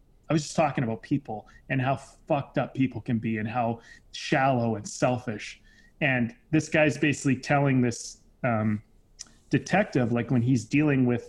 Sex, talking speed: male, 165 wpm